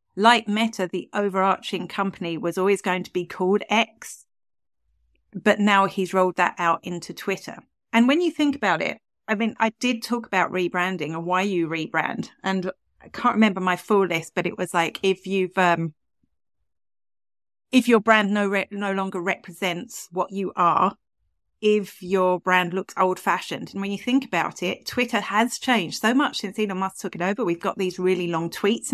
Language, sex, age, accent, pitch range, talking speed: English, female, 40-59, British, 180-225 Hz, 190 wpm